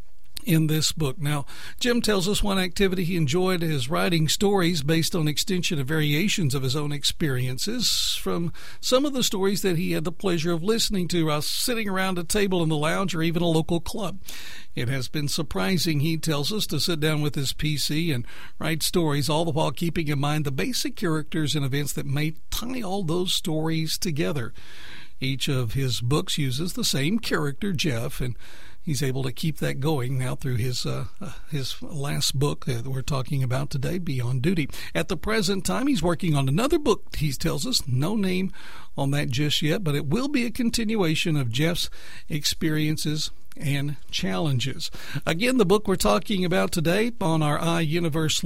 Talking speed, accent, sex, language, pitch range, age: 190 wpm, American, male, English, 145-195 Hz, 60-79